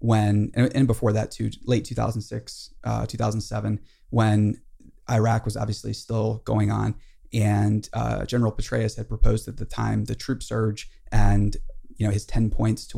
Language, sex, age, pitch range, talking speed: English, male, 20-39, 105-120 Hz, 160 wpm